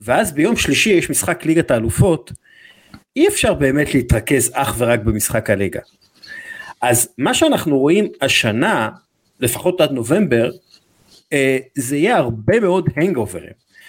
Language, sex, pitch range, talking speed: English, male, 130-175 Hz, 125 wpm